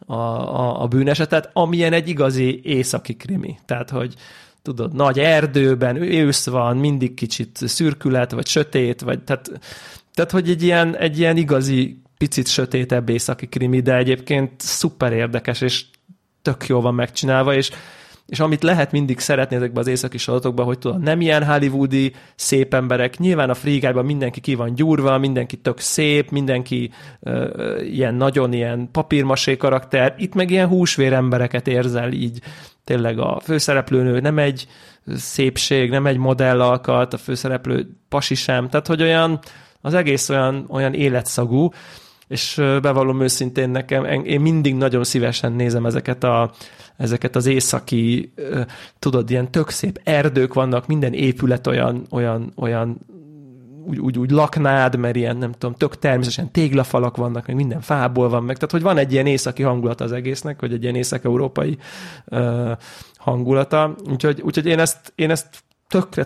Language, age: Hungarian, 30-49